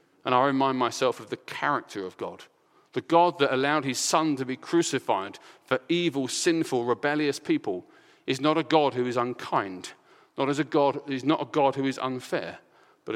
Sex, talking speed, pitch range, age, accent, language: male, 190 wpm, 130-170 Hz, 40-59, British, English